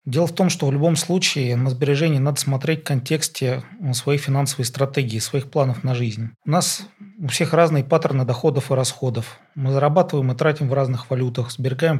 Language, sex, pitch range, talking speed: Russian, male, 125-155 Hz, 185 wpm